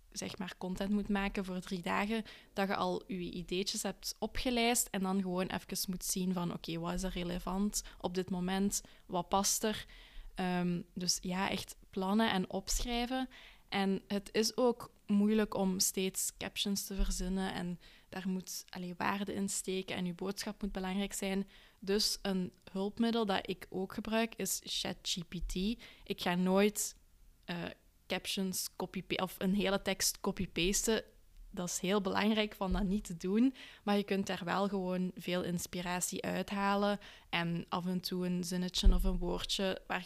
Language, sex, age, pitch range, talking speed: Dutch, female, 20-39, 180-200 Hz, 170 wpm